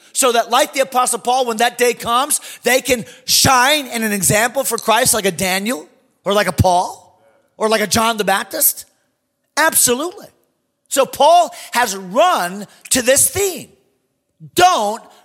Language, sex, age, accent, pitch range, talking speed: English, male, 40-59, American, 165-255 Hz, 155 wpm